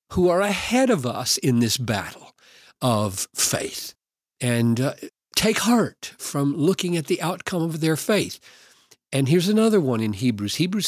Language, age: English, 50-69